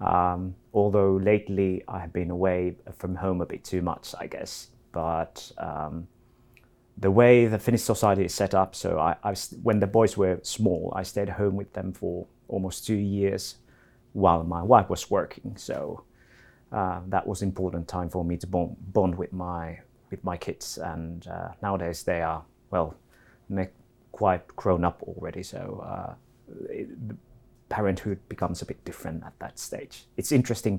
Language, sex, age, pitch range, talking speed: Arabic, male, 30-49, 90-110 Hz, 170 wpm